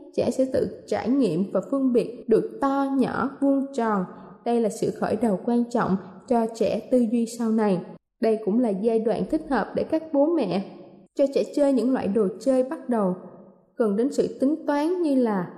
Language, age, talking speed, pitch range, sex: Vietnamese, 20-39, 205 wpm, 220-275 Hz, female